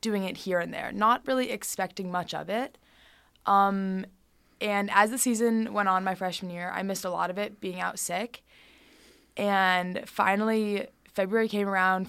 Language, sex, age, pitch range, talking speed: English, female, 20-39, 185-210 Hz, 175 wpm